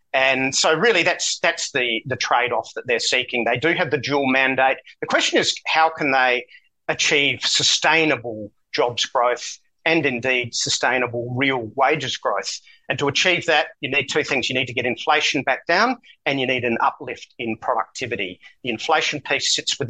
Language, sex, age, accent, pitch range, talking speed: English, male, 40-59, Australian, 125-160 Hz, 185 wpm